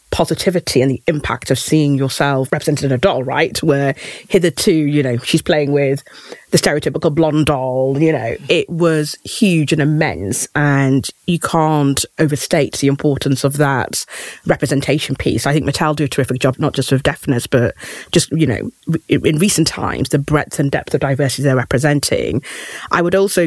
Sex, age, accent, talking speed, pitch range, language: female, 30-49, British, 175 wpm, 135-155 Hz, English